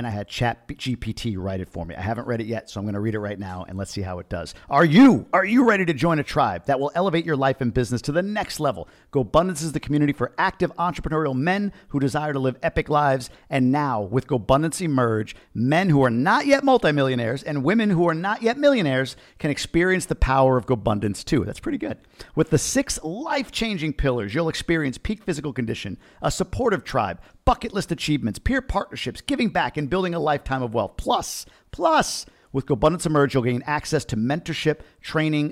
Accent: American